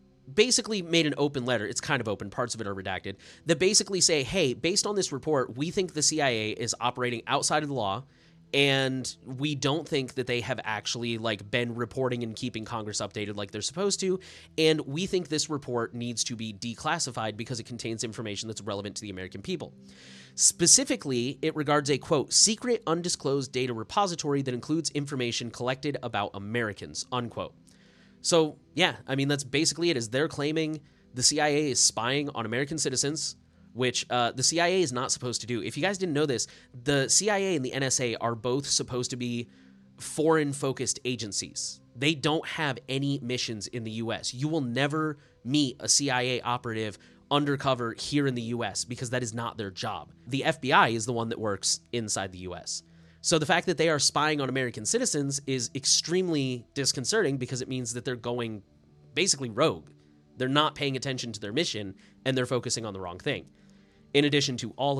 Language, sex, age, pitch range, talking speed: English, male, 30-49, 115-150 Hz, 190 wpm